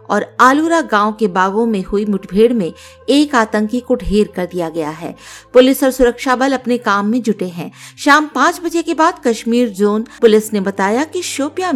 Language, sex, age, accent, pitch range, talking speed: Hindi, female, 50-69, native, 200-255 Hz, 195 wpm